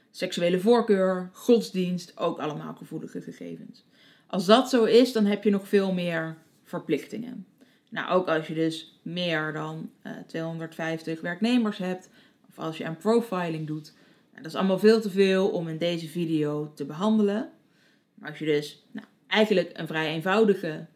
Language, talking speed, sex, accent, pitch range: Dutch, 155 wpm, female, Dutch, 160-215 Hz